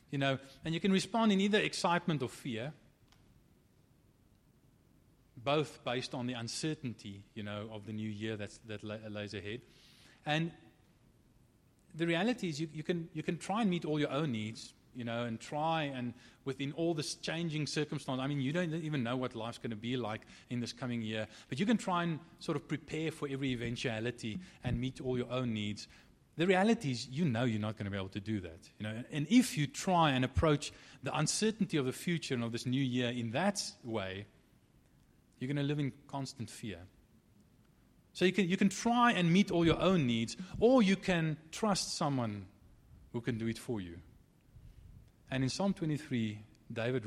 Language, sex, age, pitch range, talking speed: English, male, 30-49, 110-160 Hz, 195 wpm